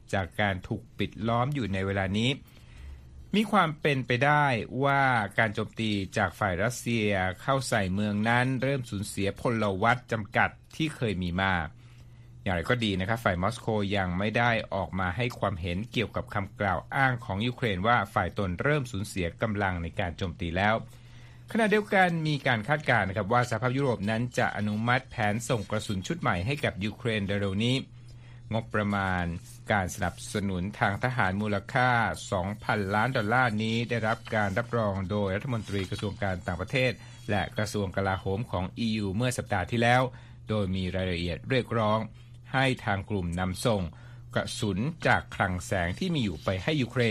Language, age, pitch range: Thai, 60-79, 100-120 Hz